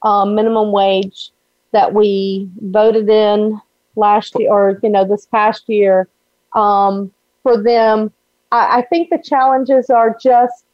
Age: 40-59